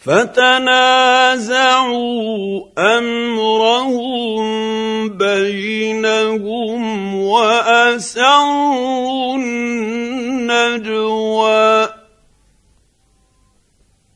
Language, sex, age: Arabic, male, 50-69